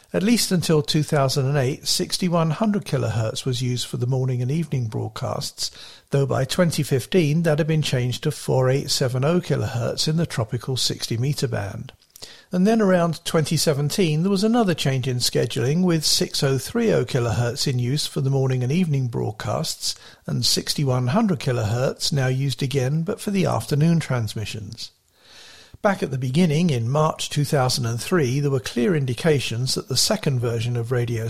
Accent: British